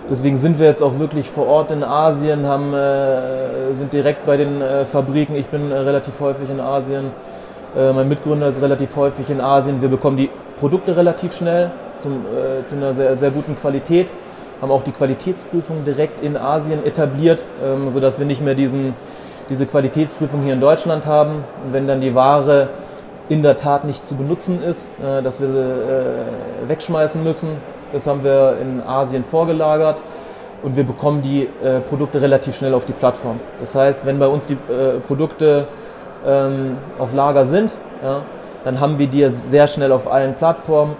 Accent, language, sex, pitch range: German, German, male, 135-150 Hz